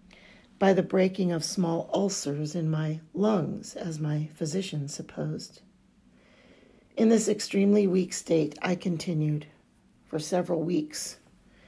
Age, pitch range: 50-69, 165-205 Hz